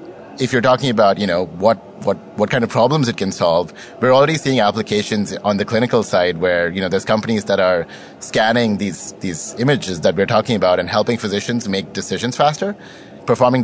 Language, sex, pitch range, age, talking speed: English, male, 100-130 Hz, 30-49, 200 wpm